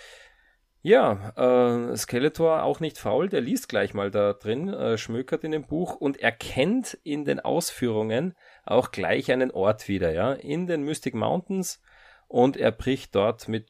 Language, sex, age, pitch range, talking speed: German, male, 30-49, 105-145 Hz, 160 wpm